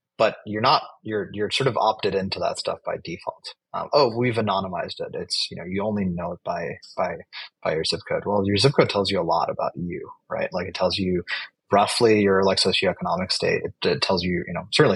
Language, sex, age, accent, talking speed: English, male, 30-49, American, 235 wpm